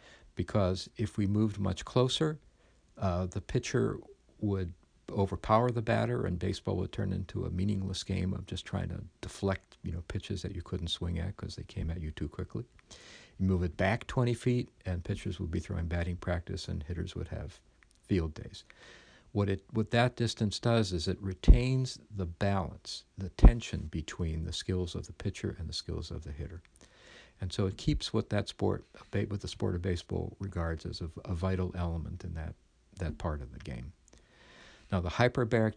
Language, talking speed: English, 190 wpm